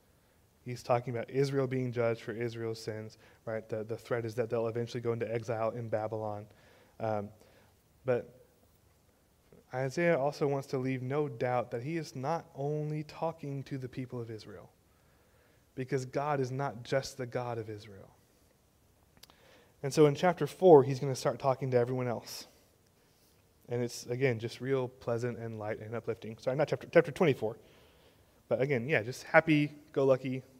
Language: English